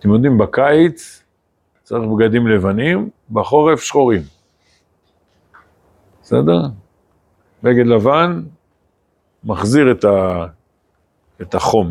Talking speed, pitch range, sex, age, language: 80 wpm, 95-125 Hz, male, 50-69, Hebrew